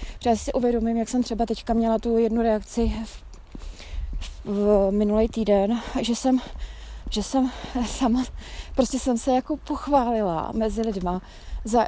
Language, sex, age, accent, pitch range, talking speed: Czech, female, 20-39, native, 210-235 Hz, 145 wpm